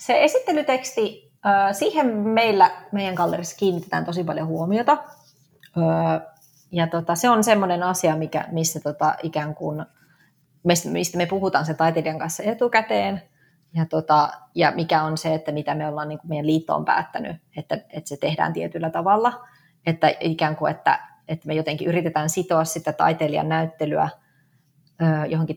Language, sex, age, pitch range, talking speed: Finnish, female, 30-49, 155-180 Hz, 125 wpm